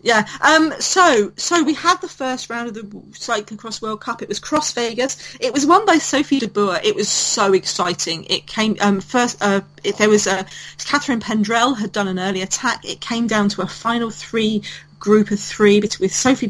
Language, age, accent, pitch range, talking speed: English, 40-59, British, 185-230 Hz, 210 wpm